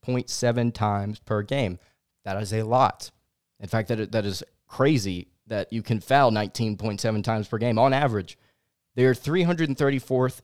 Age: 30-49